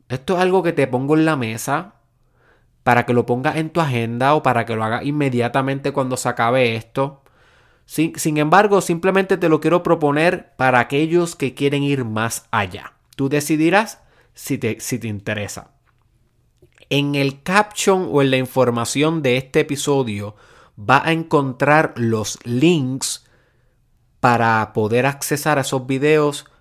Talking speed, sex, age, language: 155 wpm, male, 30-49, Spanish